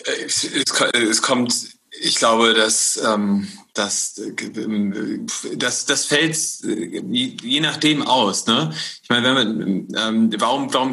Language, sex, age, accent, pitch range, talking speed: German, male, 30-49, German, 110-140 Hz, 130 wpm